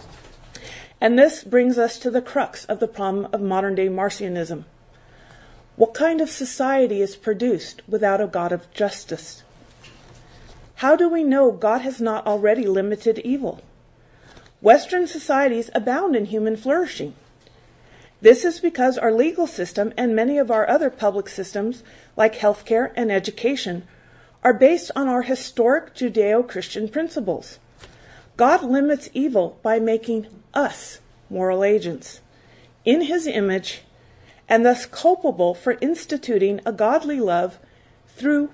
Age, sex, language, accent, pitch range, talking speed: 40-59, female, English, American, 200-275 Hz, 130 wpm